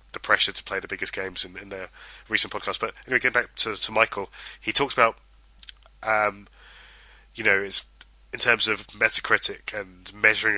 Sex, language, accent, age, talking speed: male, English, British, 20-39, 180 wpm